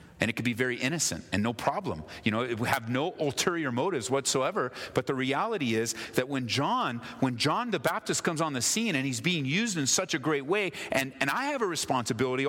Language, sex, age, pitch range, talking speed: English, male, 40-59, 90-125 Hz, 230 wpm